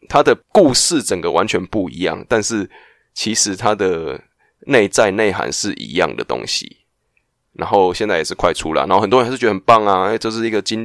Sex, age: male, 20-39